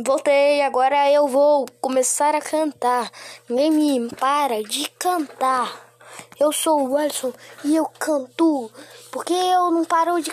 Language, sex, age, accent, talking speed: Portuguese, female, 10-29, Brazilian, 140 wpm